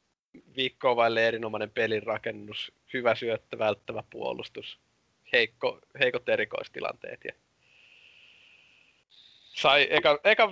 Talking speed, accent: 85 wpm, native